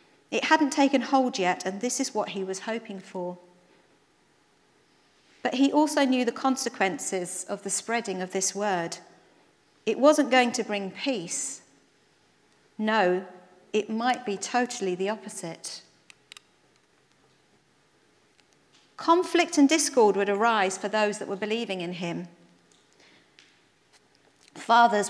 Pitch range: 190-255 Hz